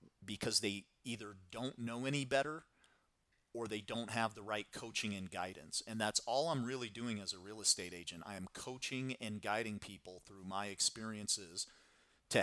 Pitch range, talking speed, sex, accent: 100-120 Hz, 180 wpm, male, American